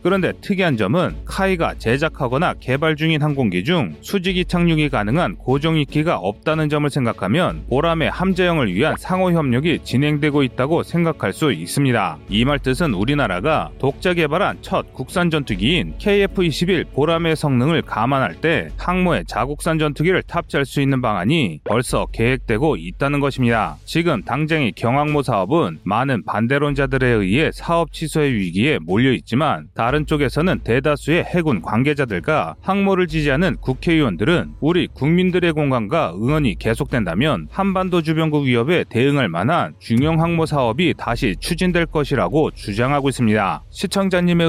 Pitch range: 125-170 Hz